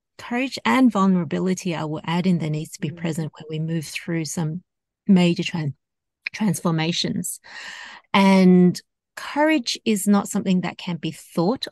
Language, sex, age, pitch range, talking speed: English, female, 30-49, 160-200 Hz, 150 wpm